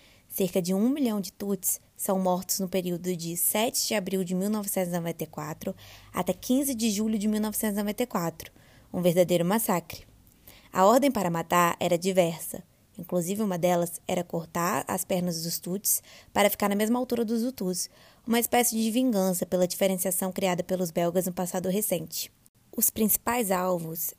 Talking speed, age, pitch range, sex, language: 155 wpm, 20-39, 175-210 Hz, female, Portuguese